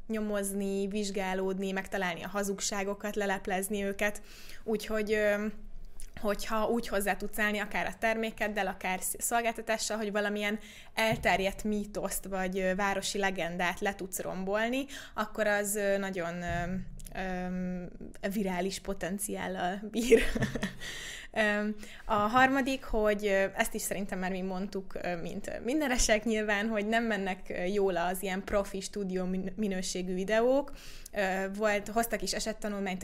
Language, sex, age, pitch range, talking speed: Hungarian, female, 20-39, 185-210 Hz, 110 wpm